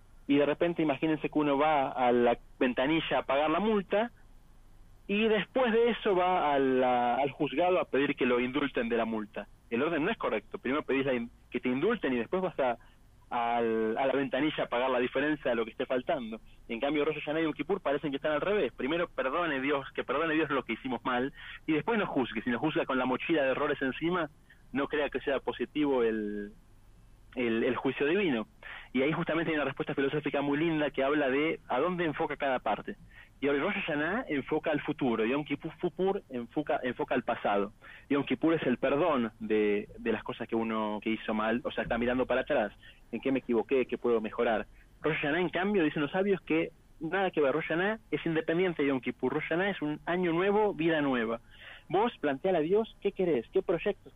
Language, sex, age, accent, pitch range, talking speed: Spanish, male, 30-49, Argentinian, 120-160 Hz, 215 wpm